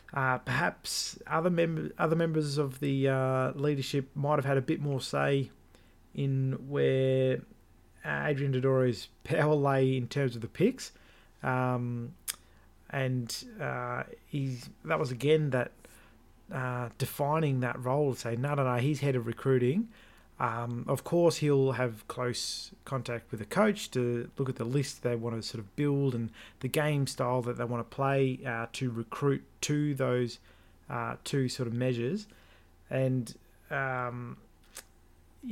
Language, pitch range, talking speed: English, 120-140 Hz, 155 wpm